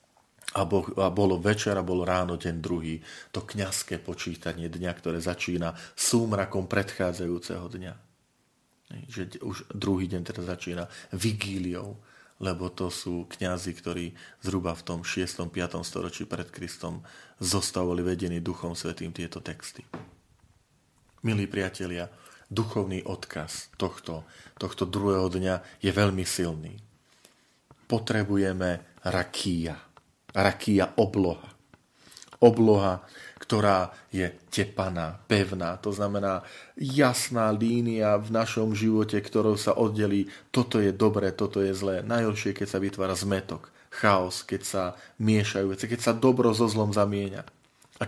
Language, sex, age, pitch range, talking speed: Slovak, male, 40-59, 90-110 Hz, 120 wpm